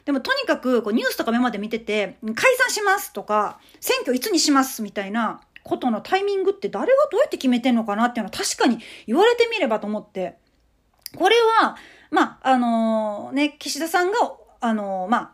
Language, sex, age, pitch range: Japanese, female, 40-59, 225-350 Hz